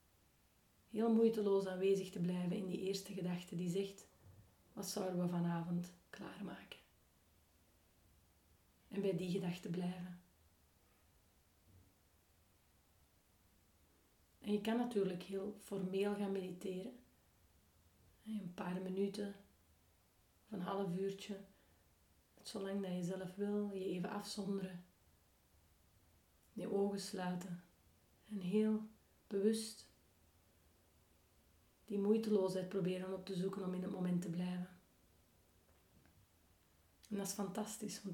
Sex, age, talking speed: female, 30-49, 105 wpm